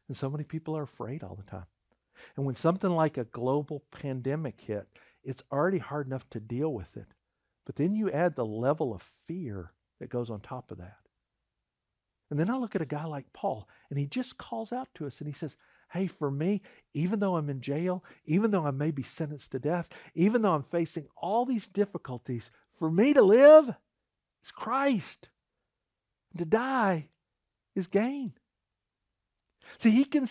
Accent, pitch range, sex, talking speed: American, 145-235 Hz, male, 185 wpm